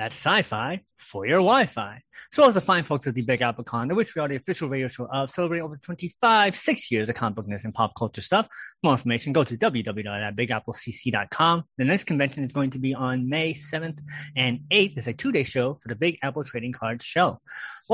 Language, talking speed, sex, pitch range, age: English, 235 wpm, male, 125-190 Hz, 30-49